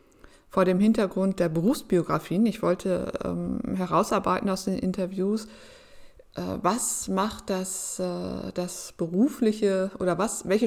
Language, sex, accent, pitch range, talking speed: German, female, German, 185-225 Hz, 110 wpm